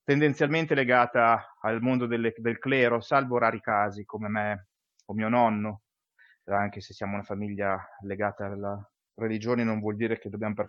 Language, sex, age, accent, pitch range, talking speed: Italian, male, 30-49, native, 100-125 Hz, 155 wpm